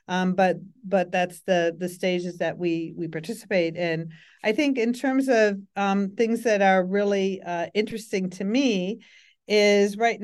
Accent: American